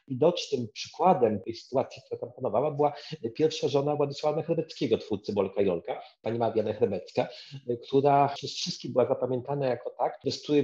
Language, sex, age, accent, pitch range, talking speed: Polish, male, 40-59, native, 105-145 Hz, 150 wpm